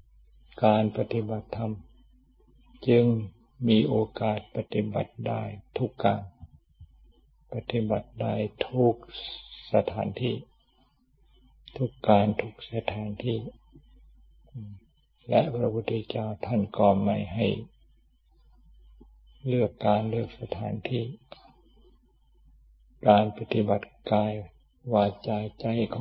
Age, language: 60-79, Thai